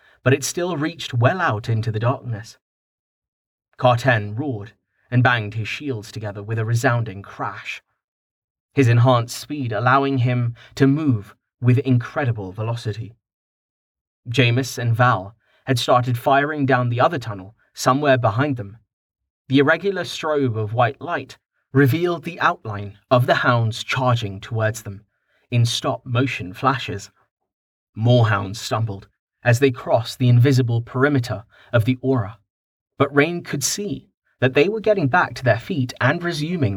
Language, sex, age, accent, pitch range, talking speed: English, male, 30-49, British, 110-135 Hz, 140 wpm